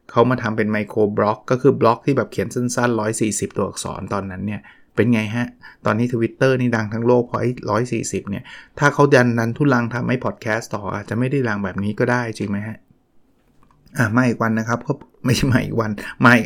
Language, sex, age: English, male, 20-39